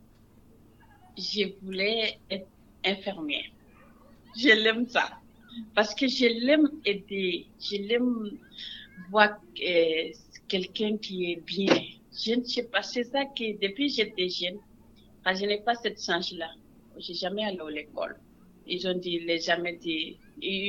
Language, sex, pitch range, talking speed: French, female, 170-215 Hz, 140 wpm